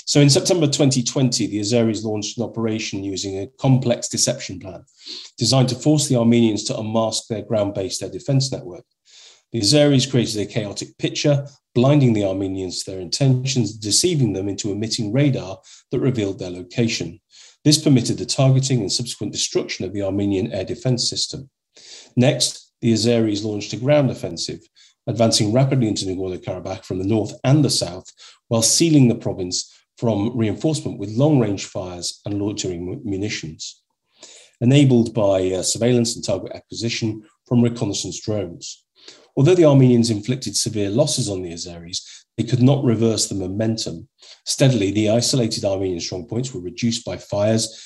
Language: English